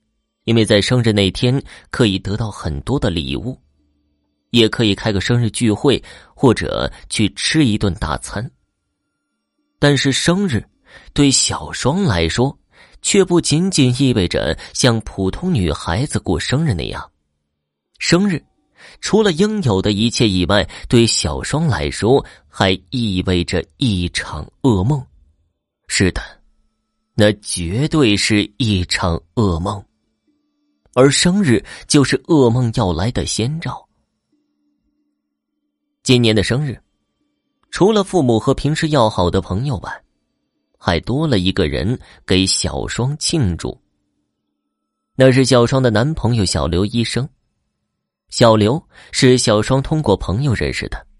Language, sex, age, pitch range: Chinese, male, 30-49, 95-135 Hz